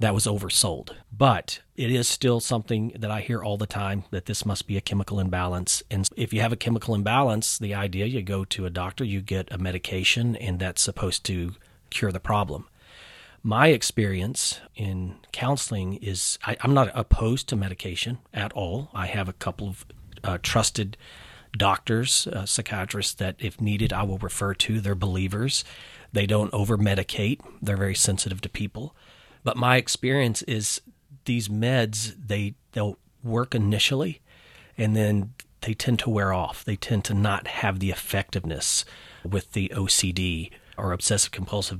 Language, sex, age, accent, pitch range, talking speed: English, male, 40-59, American, 95-120 Hz, 165 wpm